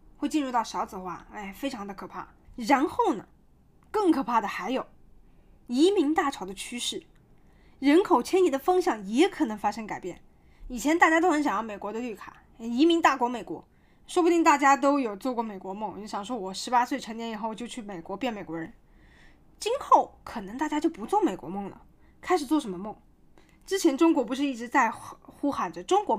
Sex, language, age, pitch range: female, Chinese, 20-39, 225-330 Hz